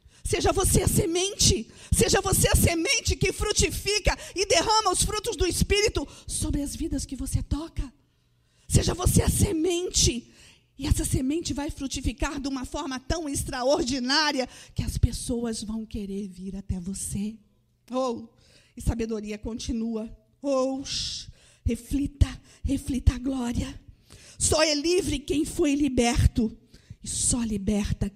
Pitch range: 220-360 Hz